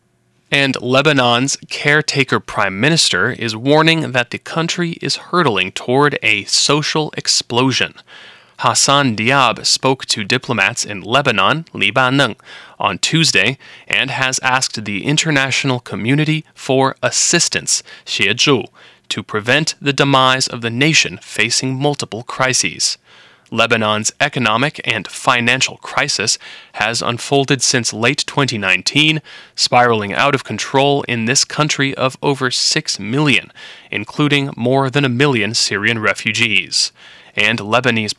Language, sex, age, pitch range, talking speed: English, male, 30-49, 115-145 Hz, 120 wpm